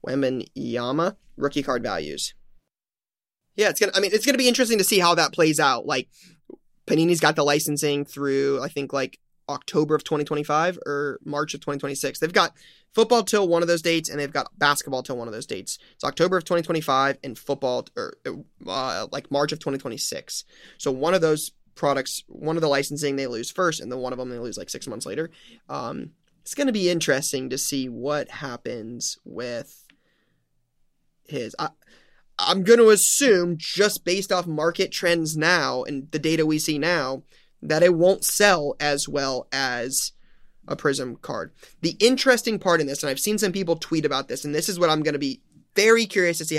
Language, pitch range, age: English, 140-175 Hz, 20-39